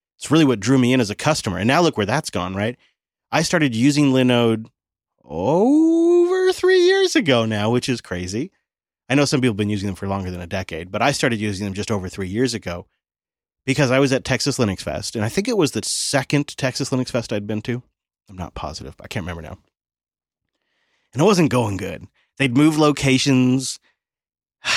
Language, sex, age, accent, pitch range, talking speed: English, male, 30-49, American, 100-145 Hz, 210 wpm